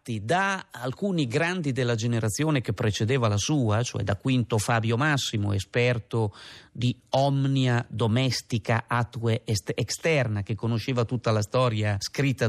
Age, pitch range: 40-59, 115-140 Hz